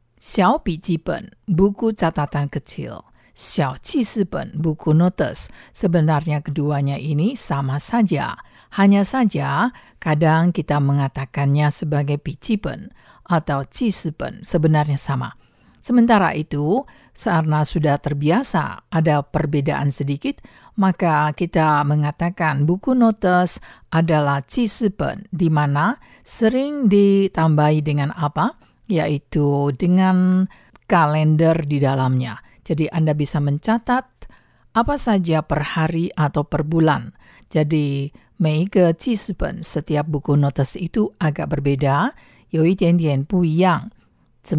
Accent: Indonesian